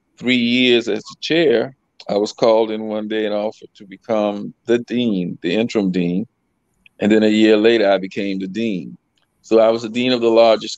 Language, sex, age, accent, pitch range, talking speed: English, male, 40-59, American, 100-110 Hz, 205 wpm